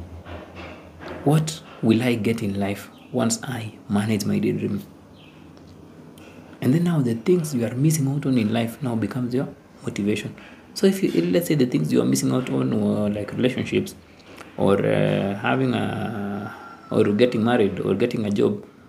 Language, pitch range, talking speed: English, 110-130 Hz, 170 wpm